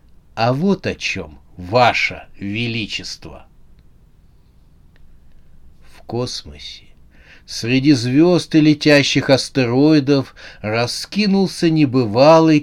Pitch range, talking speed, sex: 100-140 Hz, 70 wpm, male